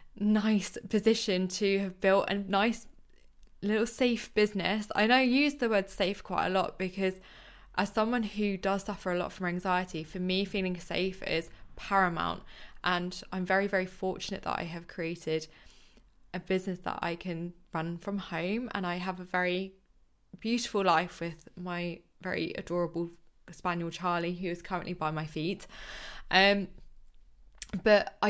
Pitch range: 175-205 Hz